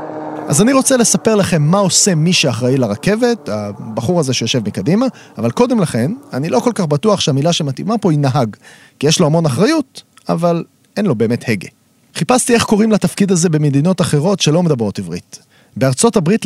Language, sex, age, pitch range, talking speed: Hebrew, male, 30-49, 125-195 Hz, 180 wpm